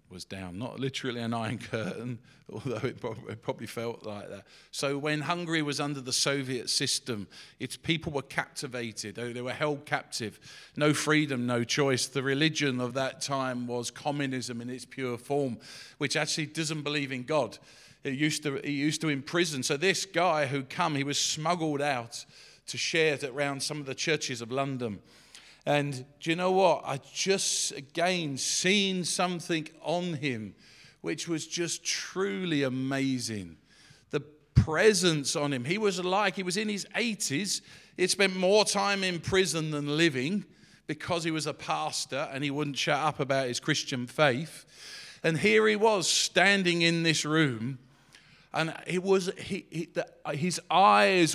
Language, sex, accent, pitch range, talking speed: English, male, British, 135-170 Hz, 165 wpm